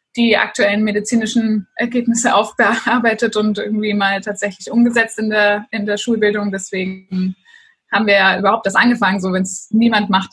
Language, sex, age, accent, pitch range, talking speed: German, female, 20-39, German, 190-215 Hz, 155 wpm